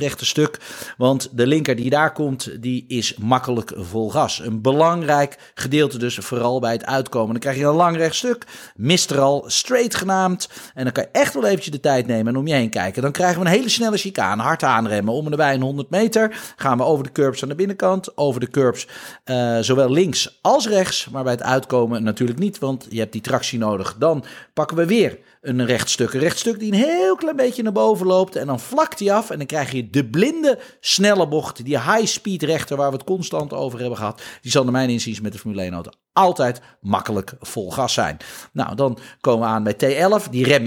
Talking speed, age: 230 wpm, 40-59